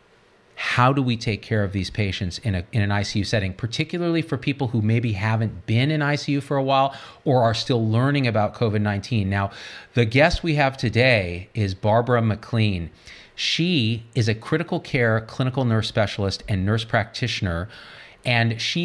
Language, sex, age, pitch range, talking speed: English, male, 40-59, 105-130 Hz, 170 wpm